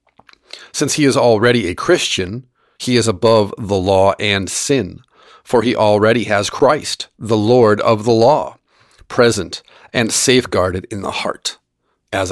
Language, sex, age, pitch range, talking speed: English, male, 40-59, 100-125 Hz, 145 wpm